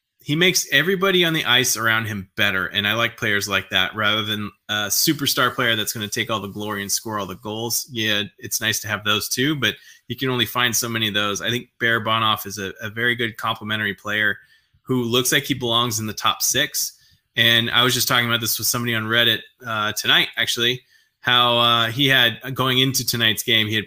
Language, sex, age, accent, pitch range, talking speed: English, male, 20-39, American, 110-135 Hz, 230 wpm